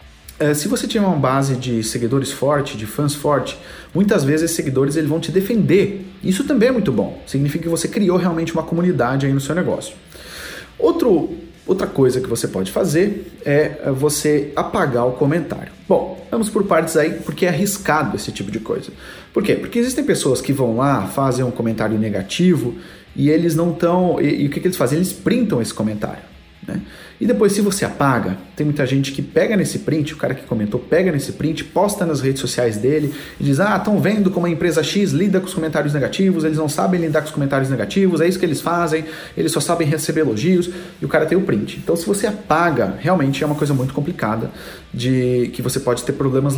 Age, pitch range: 40-59, 135-180 Hz